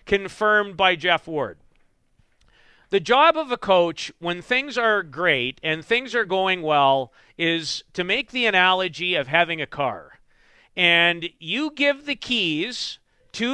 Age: 40-59